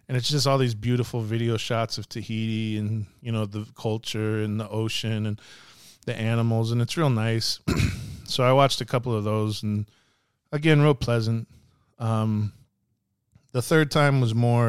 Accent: American